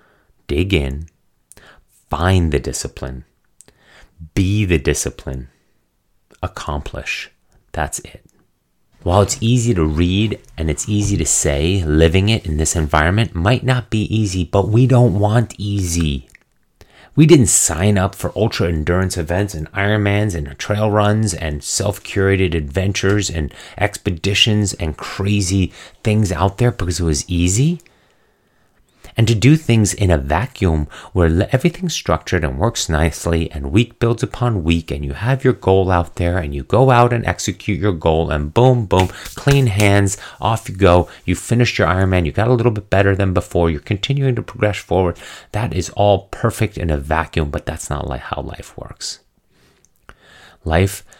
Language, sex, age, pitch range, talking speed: English, male, 30-49, 80-105 Hz, 160 wpm